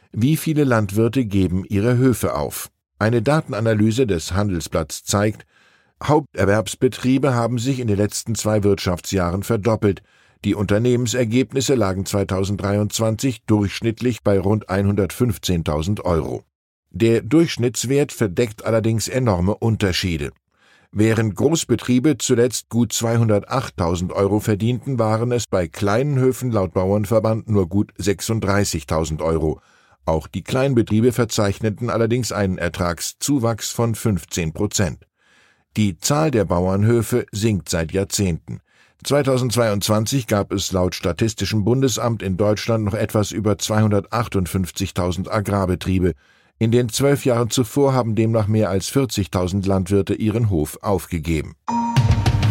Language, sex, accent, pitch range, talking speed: German, male, German, 95-120 Hz, 110 wpm